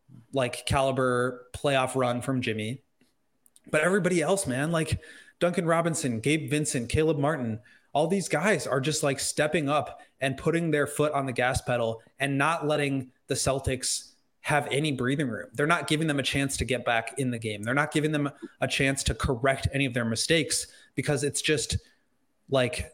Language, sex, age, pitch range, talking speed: English, male, 20-39, 125-145 Hz, 185 wpm